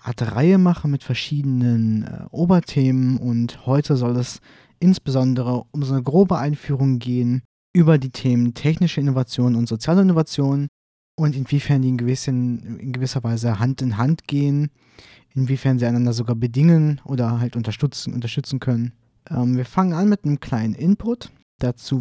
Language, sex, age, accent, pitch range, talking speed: German, male, 20-39, German, 120-145 Hz, 155 wpm